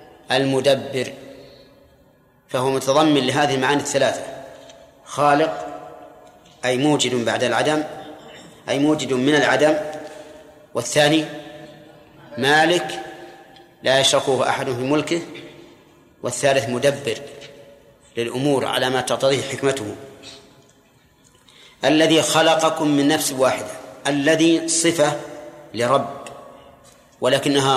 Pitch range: 135-150 Hz